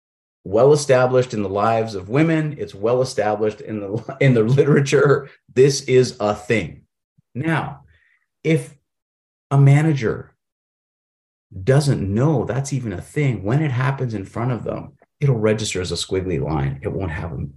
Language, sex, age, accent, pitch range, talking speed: English, male, 40-59, American, 105-145 Hz, 145 wpm